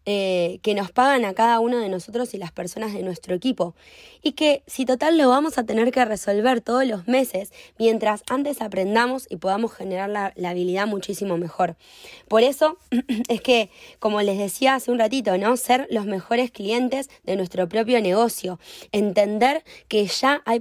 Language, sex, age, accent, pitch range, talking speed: Spanish, female, 20-39, Argentinian, 200-255 Hz, 180 wpm